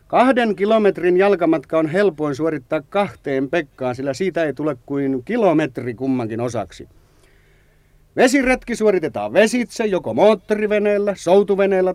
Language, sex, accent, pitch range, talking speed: Finnish, male, native, 125-185 Hz, 110 wpm